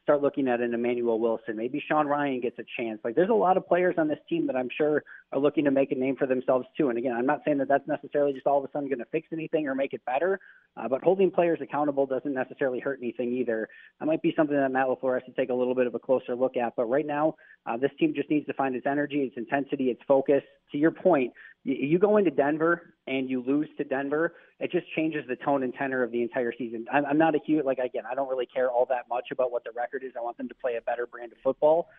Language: English